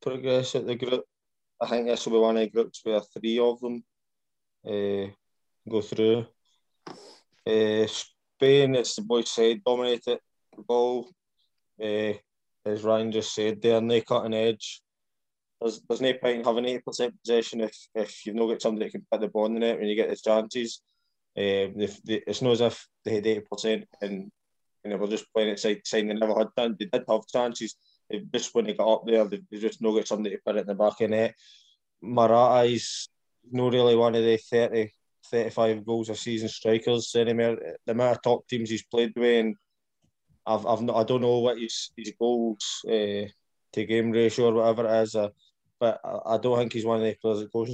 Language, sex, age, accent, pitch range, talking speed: English, male, 20-39, British, 110-120 Hz, 200 wpm